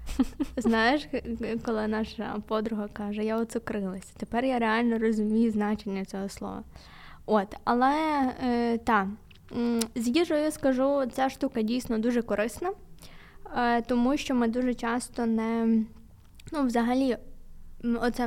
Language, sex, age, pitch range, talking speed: Ukrainian, female, 20-39, 210-250 Hz, 120 wpm